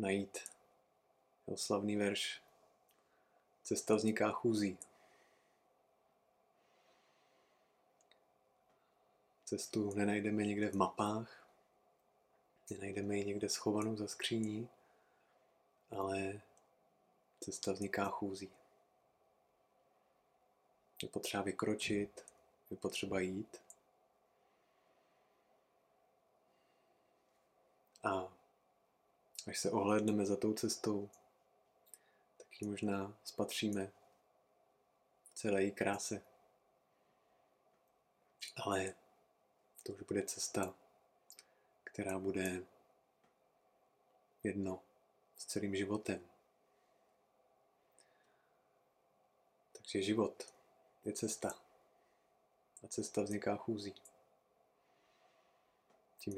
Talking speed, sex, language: 65 wpm, male, Czech